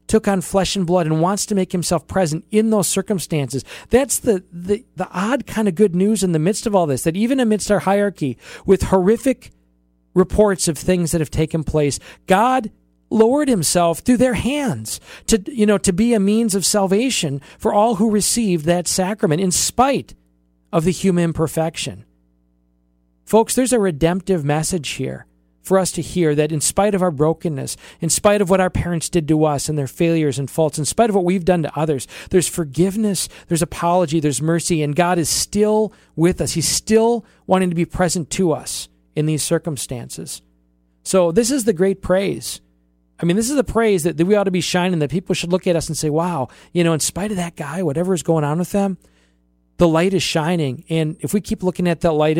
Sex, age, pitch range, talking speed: male, 40-59, 150-200 Hz, 210 wpm